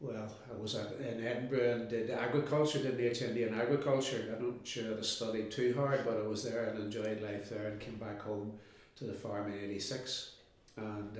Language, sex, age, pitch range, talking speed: English, male, 60-79, 105-120 Hz, 210 wpm